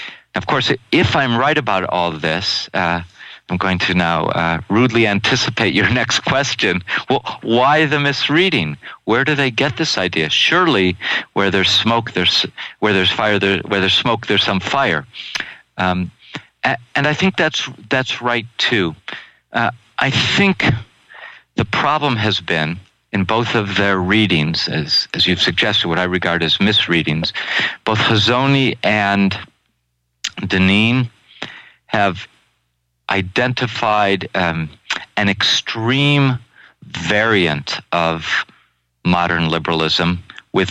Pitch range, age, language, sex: 85-115 Hz, 50-69, English, male